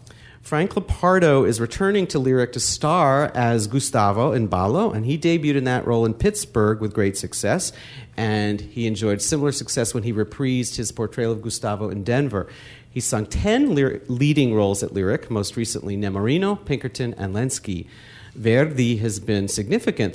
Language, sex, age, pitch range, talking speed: English, male, 40-59, 105-130 Hz, 165 wpm